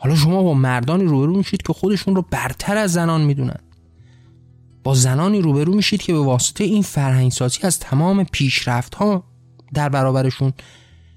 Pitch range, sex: 125-170 Hz, male